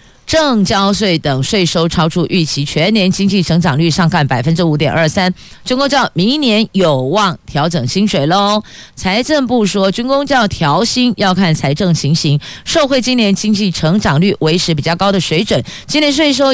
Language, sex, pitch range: Chinese, female, 155-210 Hz